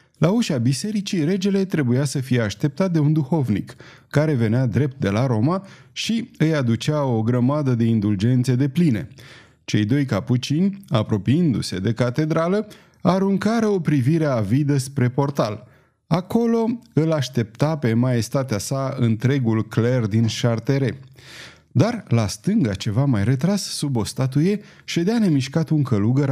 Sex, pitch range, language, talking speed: male, 115-155 Hz, Romanian, 140 wpm